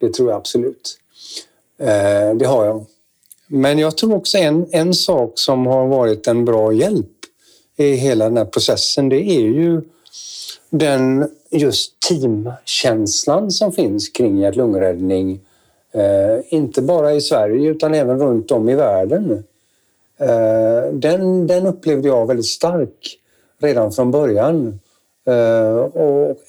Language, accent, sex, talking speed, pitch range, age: Swedish, native, male, 125 wpm, 115-160 Hz, 60-79